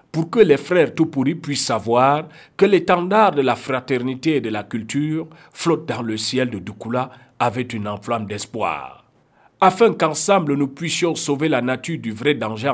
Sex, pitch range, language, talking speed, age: male, 125-165 Hz, English, 175 wpm, 50-69